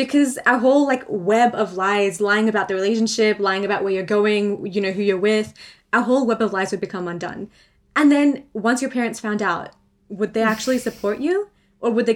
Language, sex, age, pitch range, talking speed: English, female, 20-39, 205-260 Hz, 215 wpm